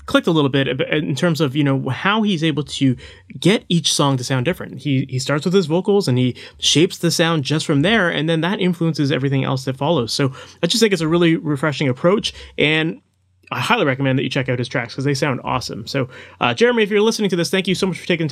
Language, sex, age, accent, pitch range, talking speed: English, male, 30-49, American, 145-195 Hz, 255 wpm